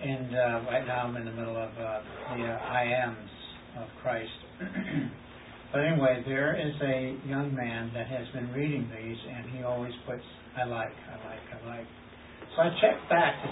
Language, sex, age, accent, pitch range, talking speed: English, male, 60-79, American, 120-145 Hz, 190 wpm